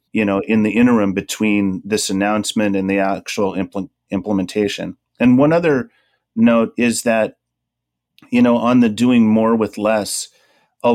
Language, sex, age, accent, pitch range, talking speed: English, male, 30-49, American, 100-115 Hz, 150 wpm